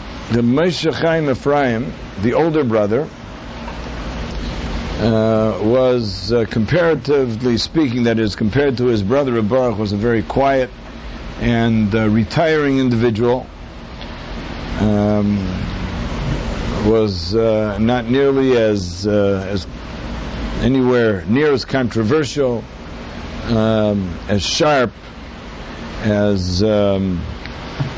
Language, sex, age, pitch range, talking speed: English, male, 60-79, 80-125 Hz, 90 wpm